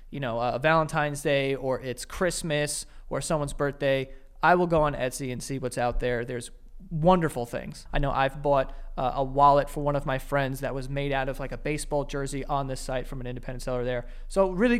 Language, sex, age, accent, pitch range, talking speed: English, male, 30-49, American, 140-180 Hz, 220 wpm